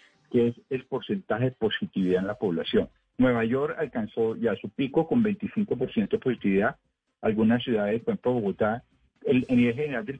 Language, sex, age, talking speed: Spanish, male, 50-69, 165 wpm